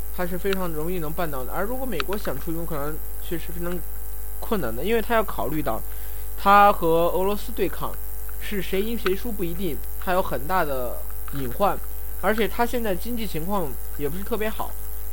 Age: 20-39